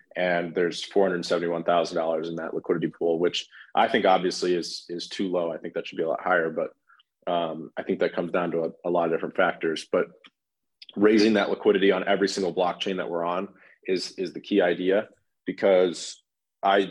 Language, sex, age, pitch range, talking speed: English, male, 30-49, 85-95 Hz, 210 wpm